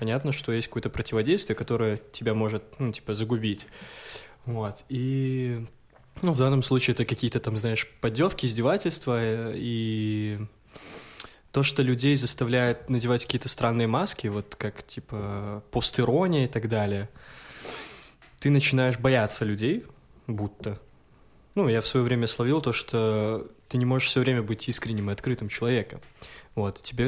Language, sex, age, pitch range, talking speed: Russian, male, 20-39, 110-130 Hz, 140 wpm